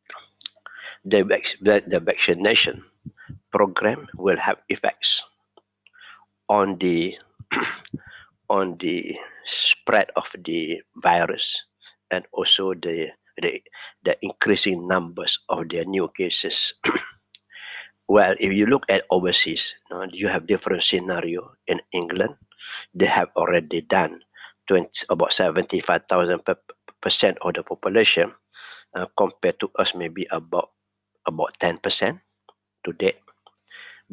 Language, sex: English, male